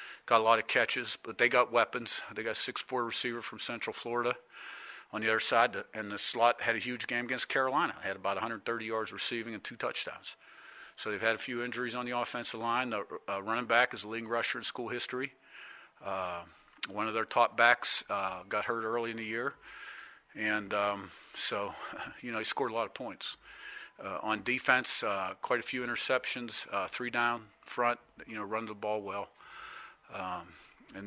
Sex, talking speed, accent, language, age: male, 200 wpm, American, English, 50-69